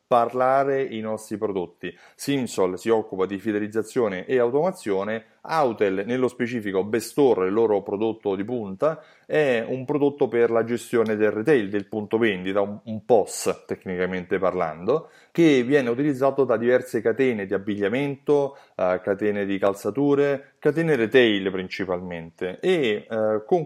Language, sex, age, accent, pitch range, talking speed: Italian, male, 30-49, native, 105-145 Hz, 135 wpm